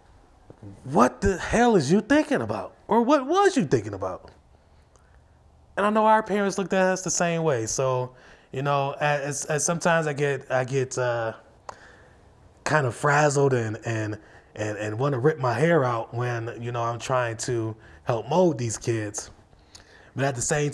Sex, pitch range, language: male, 115-145 Hz, English